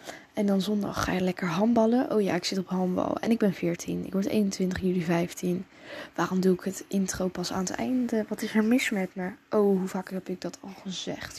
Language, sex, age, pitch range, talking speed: Dutch, female, 10-29, 185-265 Hz, 235 wpm